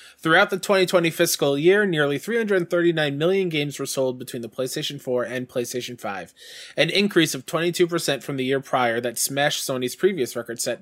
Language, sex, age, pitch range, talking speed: English, male, 20-39, 130-170 Hz, 180 wpm